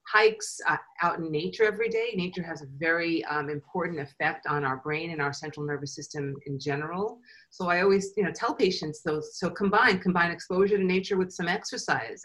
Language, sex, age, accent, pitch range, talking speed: English, female, 40-59, American, 150-185 Hz, 200 wpm